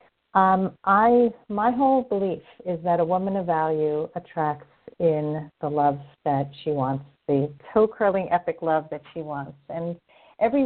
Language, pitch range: English, 160-215 Hz